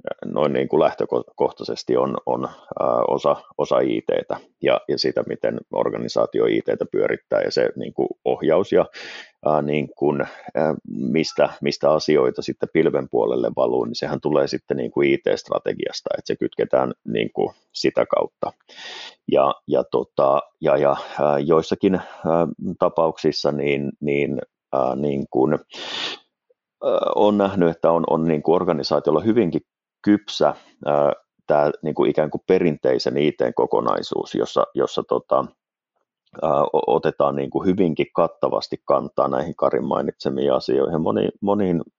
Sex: male